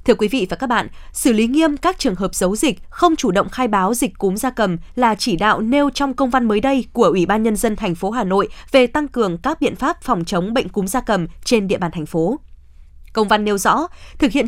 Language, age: Vietnamese, 20-39